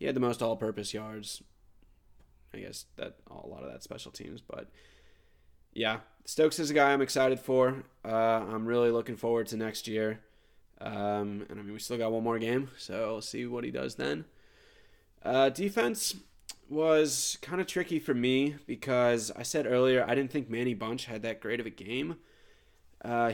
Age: 20-39